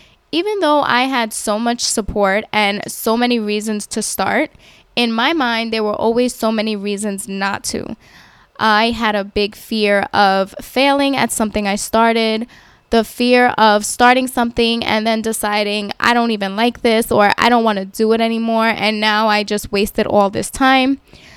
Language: English